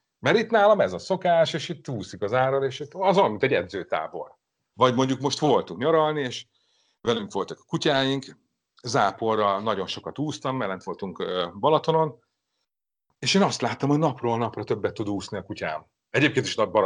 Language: Hungarian